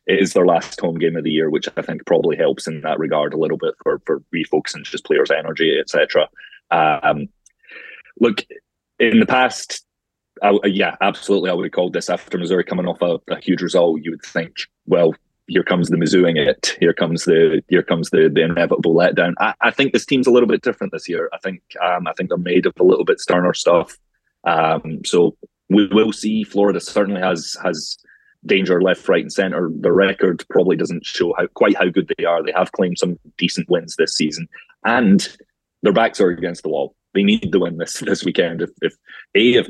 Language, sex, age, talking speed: English, male, 30-49, 210 wpm